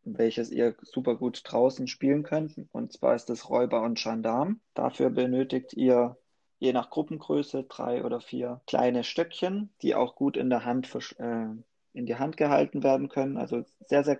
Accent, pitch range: German, 120-145 Hz